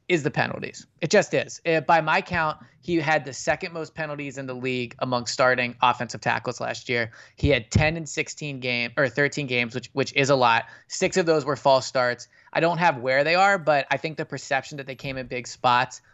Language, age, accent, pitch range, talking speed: English, 20-39, American, 125-160 Hz, 230 wpm